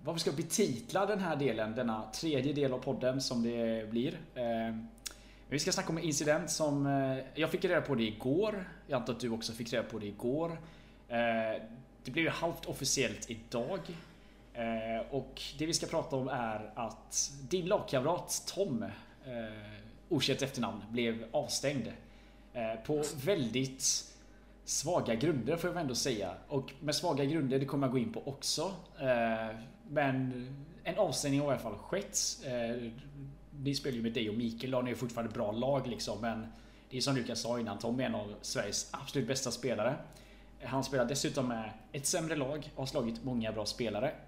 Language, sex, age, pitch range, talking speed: Swedish, male, 20-39, 115-150 Hz, 185 wpm